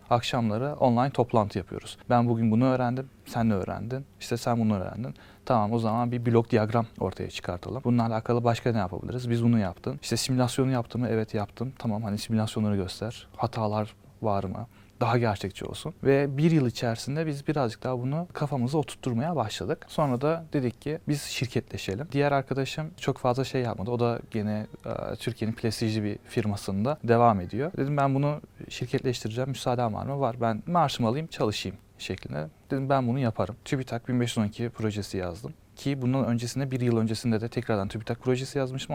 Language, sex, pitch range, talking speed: Turkish, male, 110-130 Hz, 170 wpm